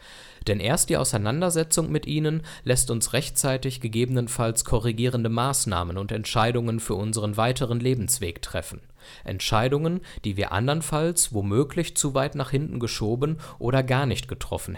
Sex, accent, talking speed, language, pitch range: male, German, 135 wpm, German, 105-135 Hz